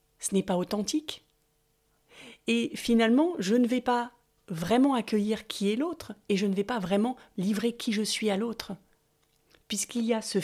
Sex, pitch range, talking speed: female, 195-245 Hz, 180 wpm